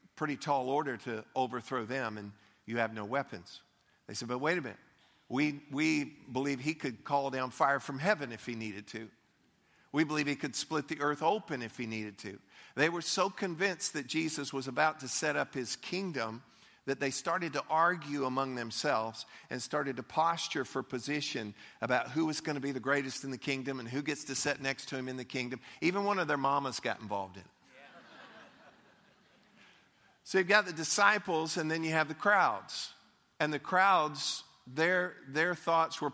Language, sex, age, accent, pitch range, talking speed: English, male, 50-69, American, 130-160 Hz, 195 wpm